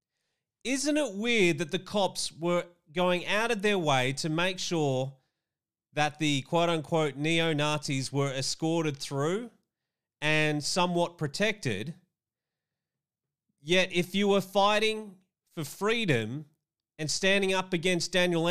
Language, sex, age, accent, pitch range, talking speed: English, male, 30-49, Australian, 155-190 Hz, 120 wpm